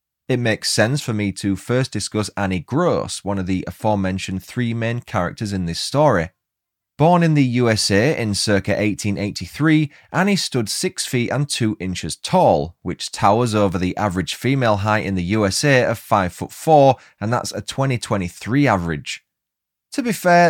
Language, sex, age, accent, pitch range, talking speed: English, male, 20-39, British, 100-135 Hz, 165 wpm